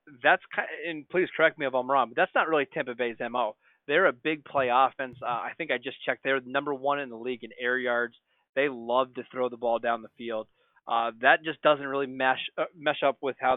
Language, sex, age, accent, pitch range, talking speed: English, male, 30-49, American, 125-145 Hz, 250 wpm